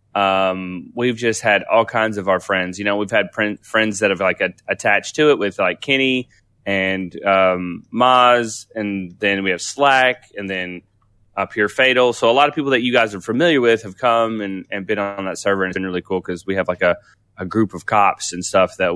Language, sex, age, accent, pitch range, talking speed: English, male, 20-39, American, 100-120 Hz, 235 wpm